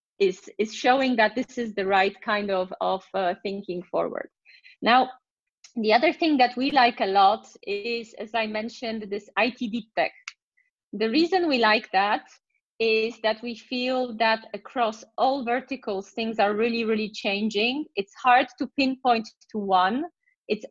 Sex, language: female, English